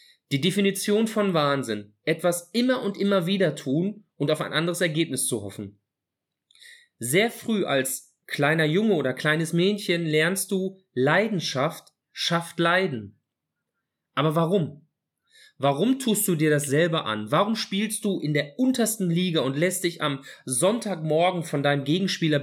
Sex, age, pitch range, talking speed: male, 30-49, 155-210 Hz, 145 wpm